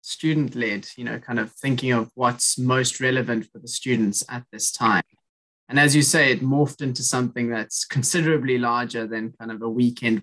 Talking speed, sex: 190 wpm, male